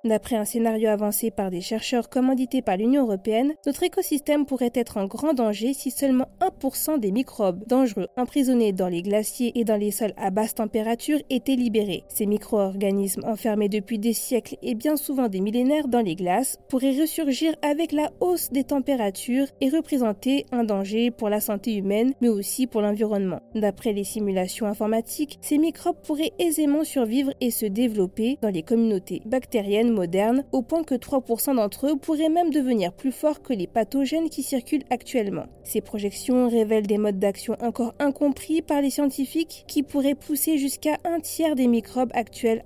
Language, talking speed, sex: French, 175 wpm, female